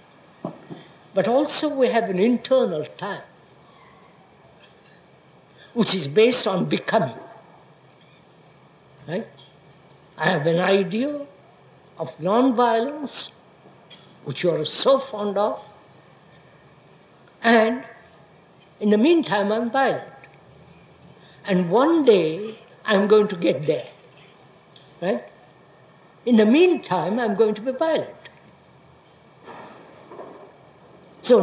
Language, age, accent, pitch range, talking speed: English, 60-79, Indian, 180-245 Hz, 105 wpm